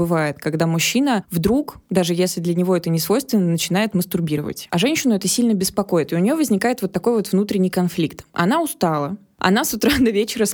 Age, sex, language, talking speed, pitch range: 20-39, female, Russian, 200 wpm, 180-220 Hz